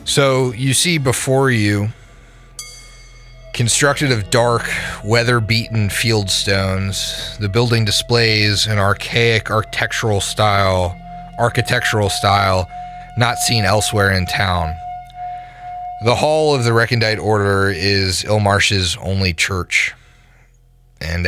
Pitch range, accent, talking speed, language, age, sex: 95-120 Hz, American, 100 wpm, English, 30-49, male